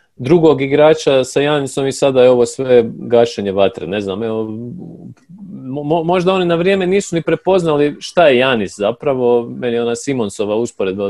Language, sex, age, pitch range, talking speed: Croatian, male, 40-59, 105-140 Hz, 170 wpm